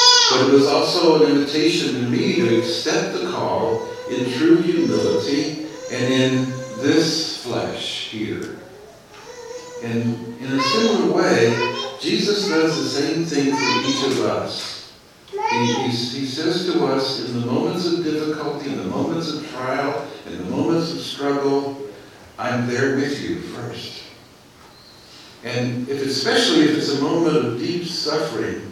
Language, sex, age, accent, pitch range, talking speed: English, male, 60-79, American, 125-155 Hz, 140 wpm